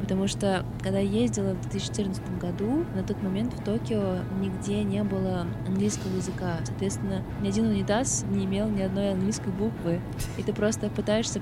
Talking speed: 170 wpm